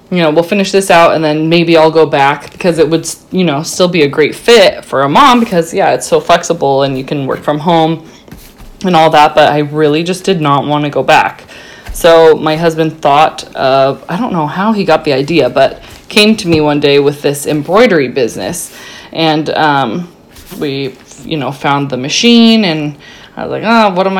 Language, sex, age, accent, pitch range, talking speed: English, female, 20-39, American, 150-185 Hz, 220 wpm